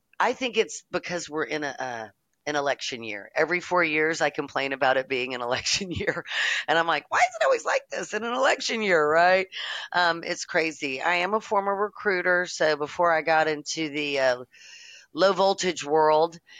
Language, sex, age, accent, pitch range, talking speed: English, female, 40-59, American, 135-190 Hz, 190 wpm